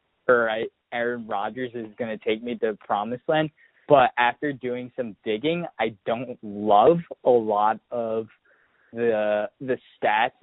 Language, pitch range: English, 105-125 Hz